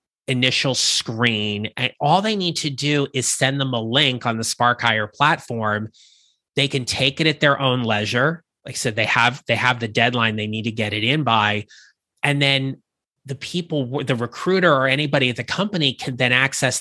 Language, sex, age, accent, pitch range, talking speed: English, male, 30-49, American, 115-140 Hz, 200 wpm